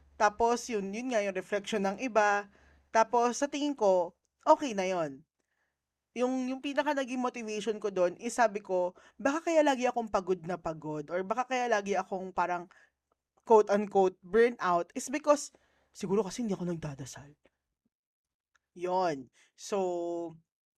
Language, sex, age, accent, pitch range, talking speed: Filipino, female, 20-39, native, 180-250 Hz, 140 wpm